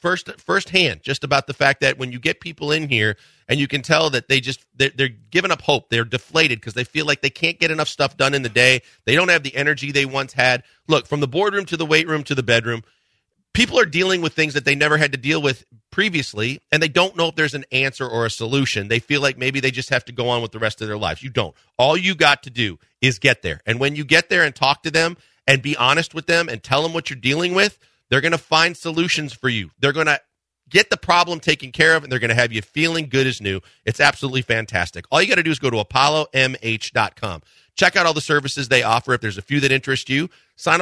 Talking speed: 270 wpm